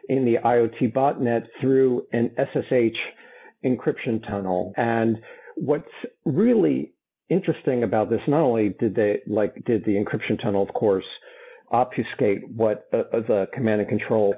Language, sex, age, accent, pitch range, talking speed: English, male, 50-69, American, 105-130 Hz, 140 wpm